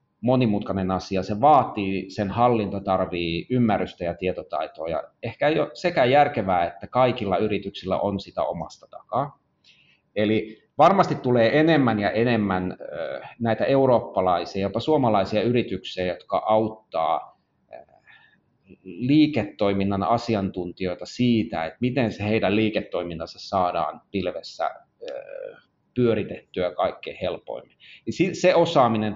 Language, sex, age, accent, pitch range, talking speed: Finnish, male, 30-49, native, 95-125 Hz, 105 wpm